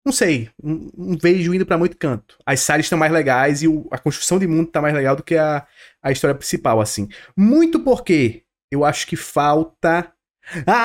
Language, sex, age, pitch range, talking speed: Portuguese, male, 20-39, 140-215 Hz, 205 wpm